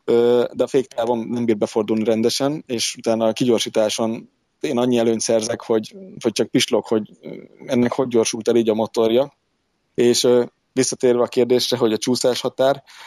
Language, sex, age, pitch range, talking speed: Hungarian, male, 20-39, 115-135 Hz, 160 wpm